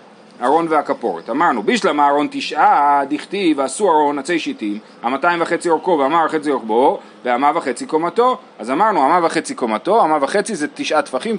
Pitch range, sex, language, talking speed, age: 140-185 Hz, male, Hebrew, 150 wpm, 30-49